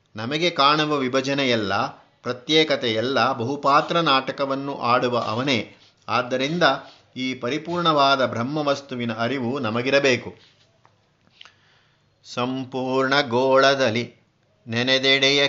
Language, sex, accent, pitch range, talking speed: Kannada, male, native, 120-140 Hz, 65 wpm